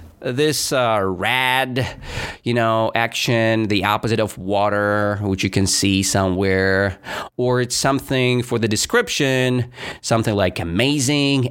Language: English